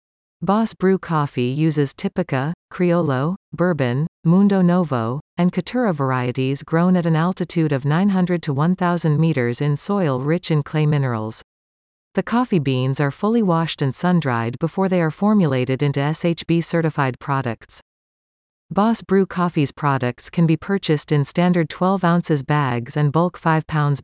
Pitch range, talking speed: 135-180 Hz, 145 wpm